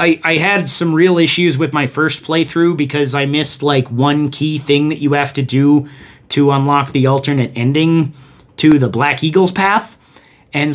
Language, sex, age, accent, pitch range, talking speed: English, male, 30-49, American, 130-155 Hz, 185 wpm